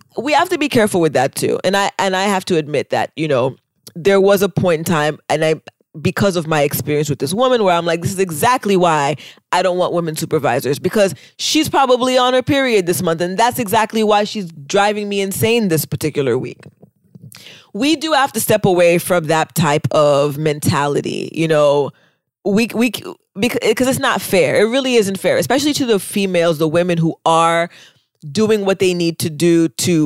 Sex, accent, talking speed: female, American, 205 wpm